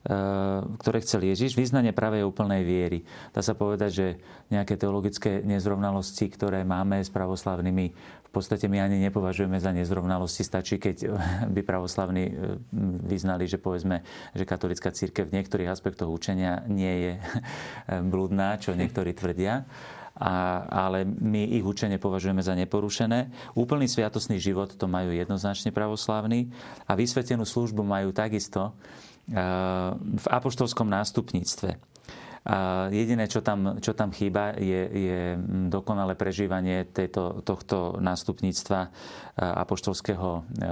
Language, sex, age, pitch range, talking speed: Slovak, male, 40-59, 95-110 Hz, 120 wpm